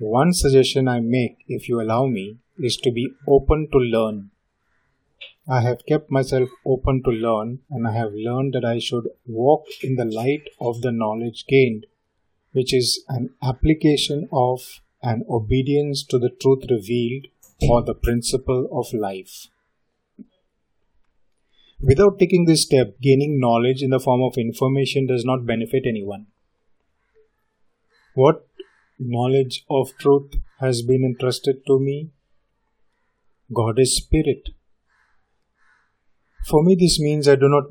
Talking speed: 135 wpm